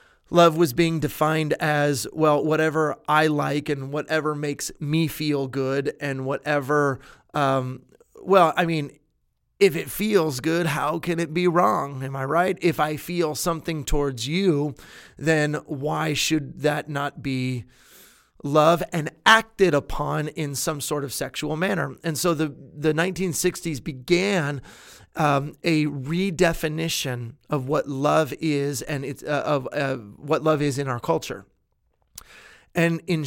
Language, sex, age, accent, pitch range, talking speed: English, male, 30-49, American, 140-165 Hz, 145 wpm